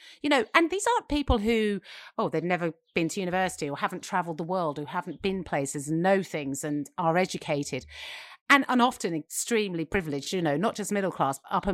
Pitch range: 155-235 Hz